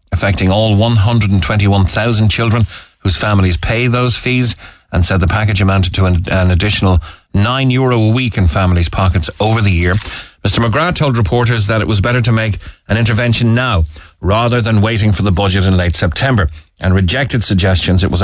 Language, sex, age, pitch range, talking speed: English, male, 30-49, 90-115 Hz, 180 wpm